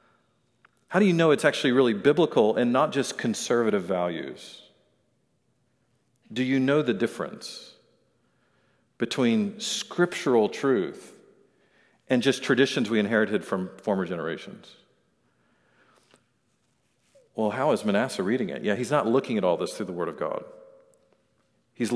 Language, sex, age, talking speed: English, male, 50-69, 130 wpm